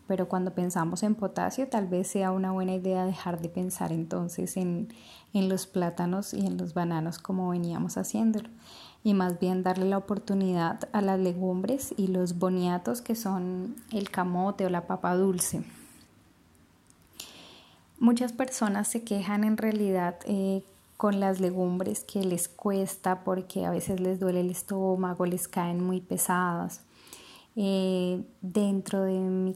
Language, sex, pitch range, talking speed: Spanish, female, 185-210 Hz, 150 wpm